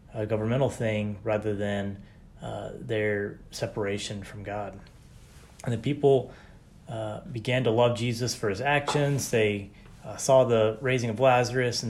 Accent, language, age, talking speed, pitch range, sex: American, English, 30-49, 140 wpm, 105-125 Hz, male